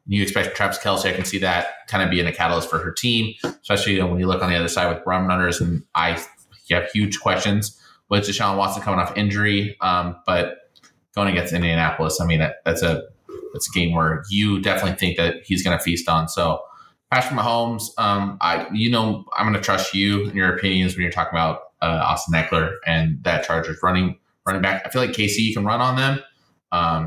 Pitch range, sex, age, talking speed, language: 85-100 Hz, male, 20-39, 215 wpm, English